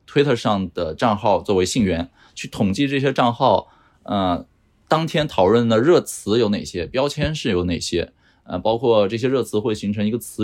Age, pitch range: 20-39, 95-125 Hz